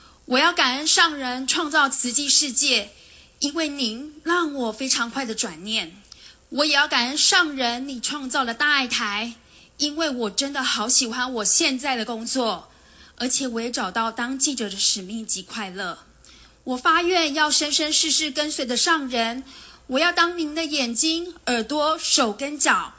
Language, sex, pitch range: Chinese, female, 235-300 Hz